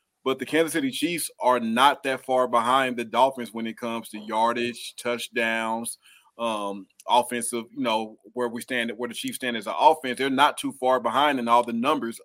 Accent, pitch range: American, 115-135 Hz